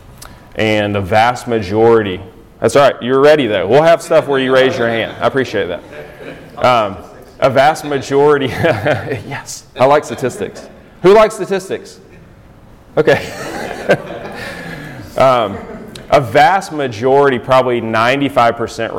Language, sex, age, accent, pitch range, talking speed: English, male, 30-49, American, 105-135 Hz, 125 wpm